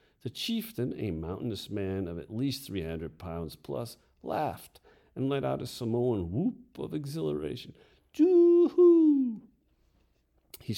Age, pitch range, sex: 50-69, 80-120 Hz, male